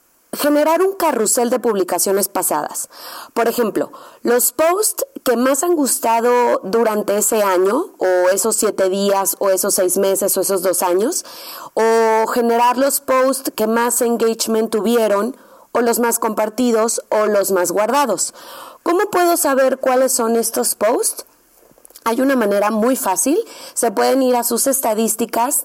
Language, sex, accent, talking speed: Spanish, female, Mexican, 145 wpm